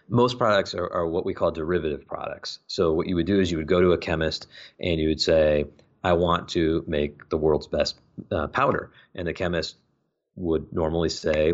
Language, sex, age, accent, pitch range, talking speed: English, male, 30-49, American, 80-95 Hz, 210 wpm